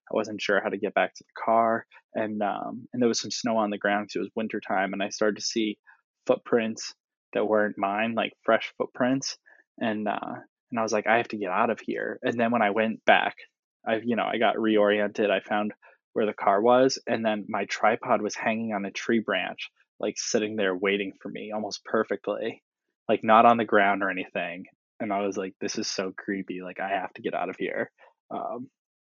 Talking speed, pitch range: 225 wpm, 100-115 Hz